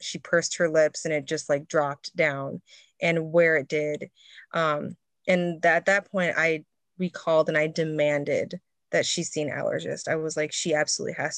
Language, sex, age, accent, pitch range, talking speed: English, female, 20-39, American, 160-185 Hz, 185 wpm